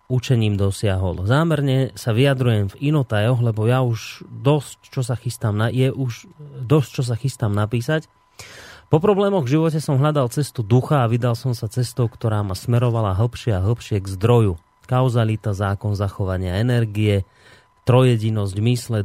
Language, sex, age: Slovak, male, 30-49